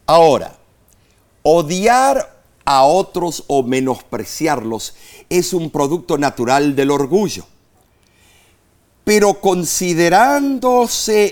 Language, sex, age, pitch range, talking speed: Spanish, male, 50-69, 140-200 Hz, 75 wpm